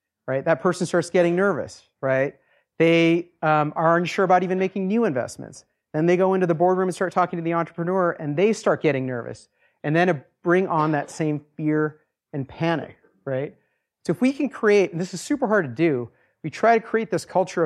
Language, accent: English, American